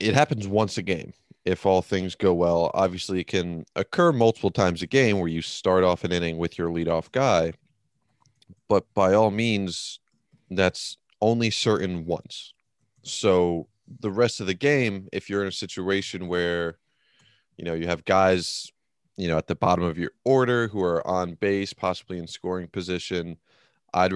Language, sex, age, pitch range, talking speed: English, male, 30-49, 85-95 Hz, 175 wpm